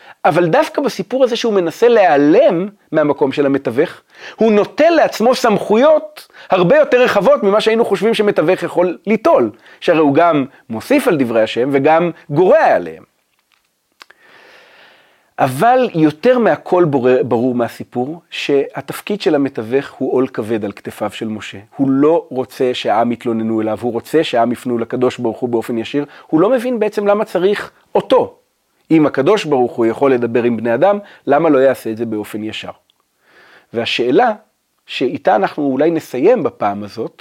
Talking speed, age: 150 wpm, 40-59